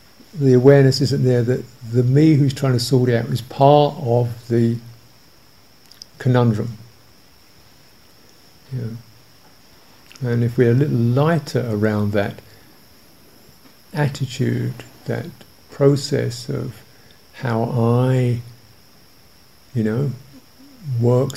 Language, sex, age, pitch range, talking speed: English, male, 50-69, 120-140 Hz, 100 wpm